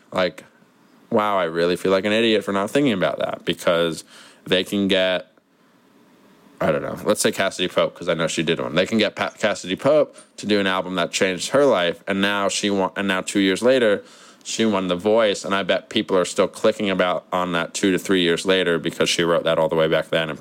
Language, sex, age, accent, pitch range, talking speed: English, male, 20-39, American, 90-105 Hz, 240 wpm